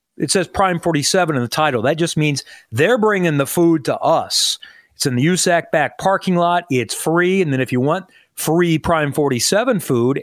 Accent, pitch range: American, 125-160 Hz